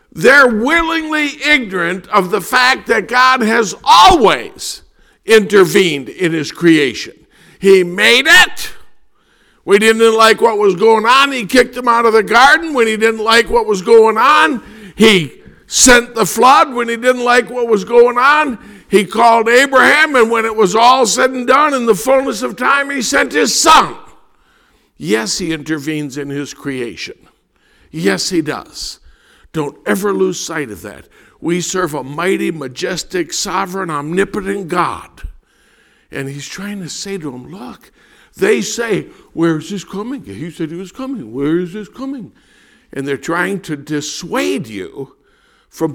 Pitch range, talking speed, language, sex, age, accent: 155-240 Hz, 160 wpm, English, male, 50-69, American